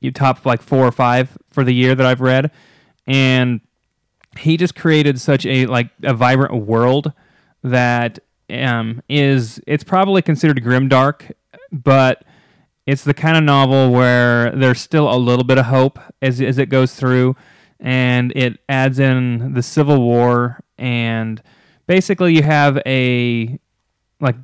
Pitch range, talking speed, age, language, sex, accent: 120-140 Hz, 150 wpm, 30-49, English, male, American